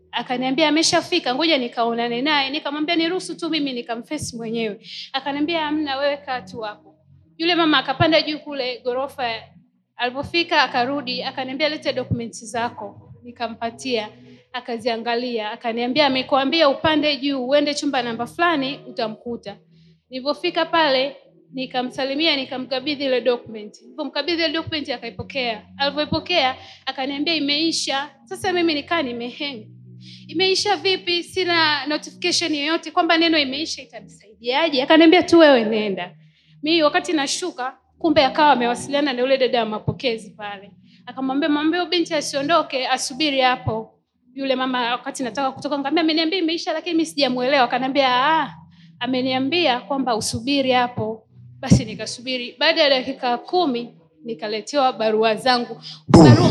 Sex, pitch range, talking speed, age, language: female, 235-310 Hz, 115 wpm, 30-49, Swahili